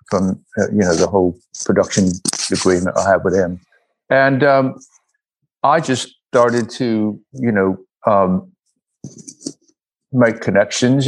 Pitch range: 105-130 Hz